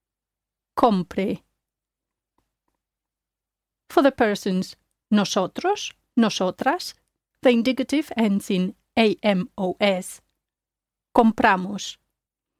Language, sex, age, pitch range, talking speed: English, female, 30-49, 185-245 Hz, 55 wpm